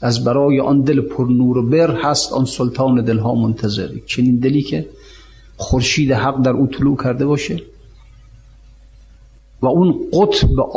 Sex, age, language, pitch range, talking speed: male, 50-69, Persian, 120-155 Hz, 140 wpm